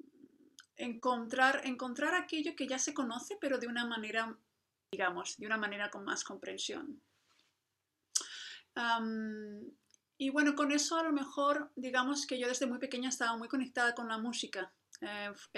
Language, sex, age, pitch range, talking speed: English, female, 30-49, 210-265 Hz, 145 wpm